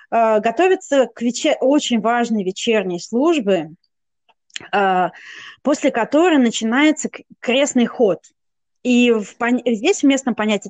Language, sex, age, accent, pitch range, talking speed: Russian, female, 20-39, native, 200-265 Hz, 90 wpm